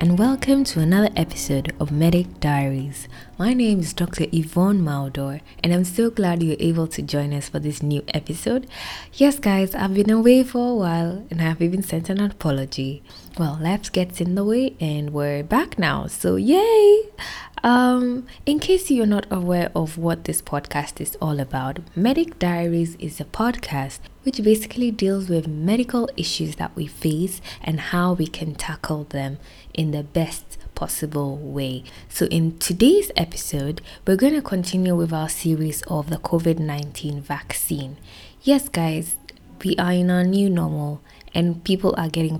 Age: 20-39